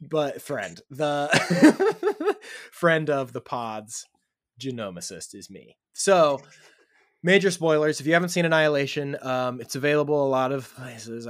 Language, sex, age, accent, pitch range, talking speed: English, male, 20-39, American, 130-160 Hz, 135 wpm